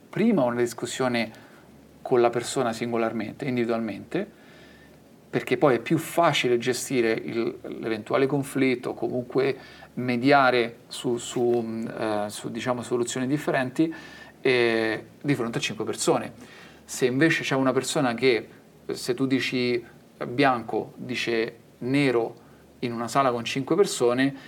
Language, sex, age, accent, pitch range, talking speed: Italian, male, 40-59, native, 120-135 Hz, 125 wpm